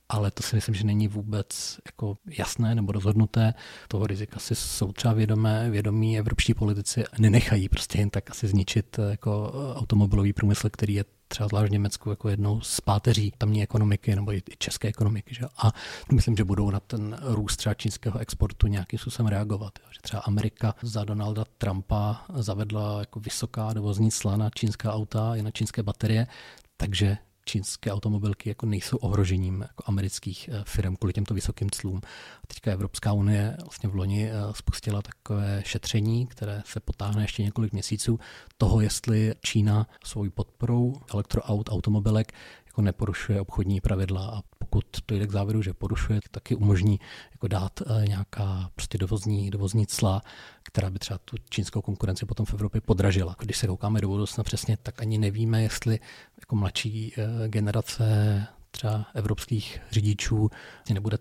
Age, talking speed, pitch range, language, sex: 40-59, 155 wpm, 100-110 Hz, Czech, male